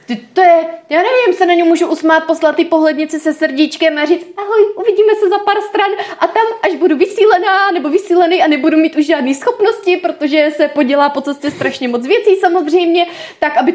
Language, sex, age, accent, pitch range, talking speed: Czech, female, 20-39, native, 240-350 Hz, 200 wpm